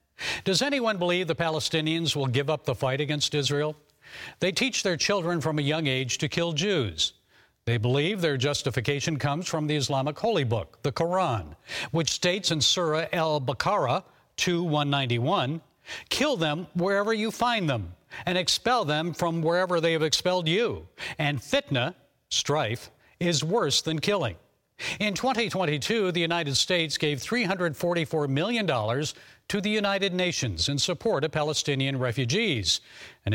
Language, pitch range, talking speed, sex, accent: English, 140-180 Hz, 150 wpm, male, American